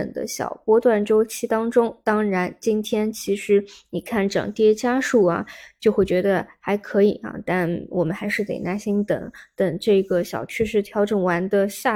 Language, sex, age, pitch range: Chinese, female, 20-39, 190-220 Hz